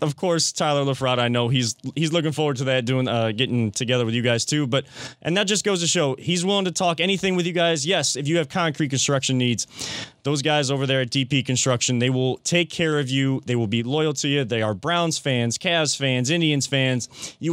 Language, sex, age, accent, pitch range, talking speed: English, male, 20-39, American, 125-160 Hz, 240 wpm